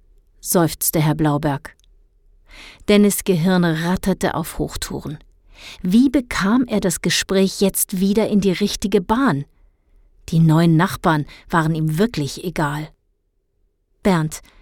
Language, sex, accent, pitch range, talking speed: German, female, German, 130-200 Hz, 110 wpm